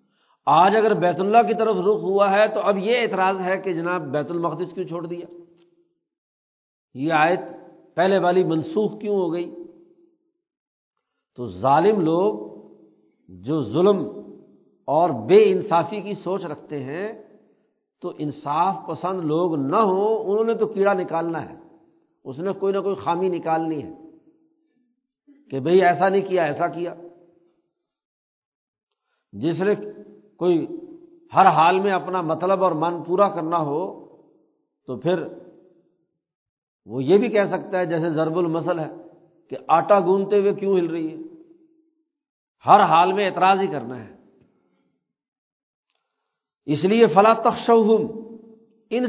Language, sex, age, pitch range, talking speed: Urdu, male, 60-79, 170-220 Hz, 140 wpm